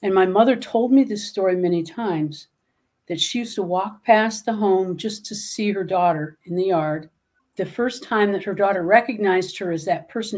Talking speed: 210 wpm